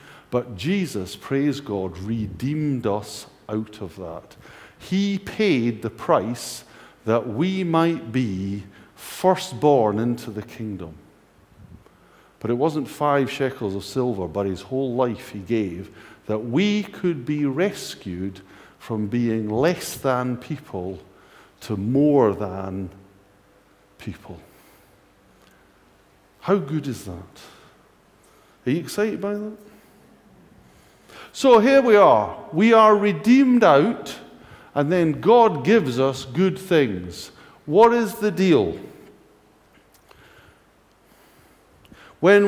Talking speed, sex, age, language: 110 wpm, male, 50-69, English